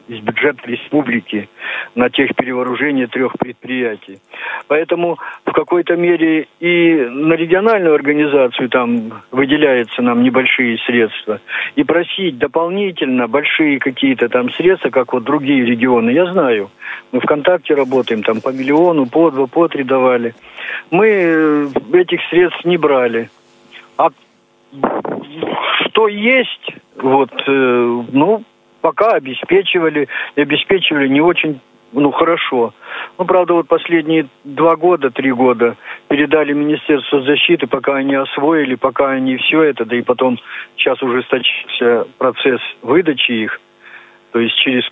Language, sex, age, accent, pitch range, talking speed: Russian, male, 50-69, native, 125-160 Hz, 125 wpm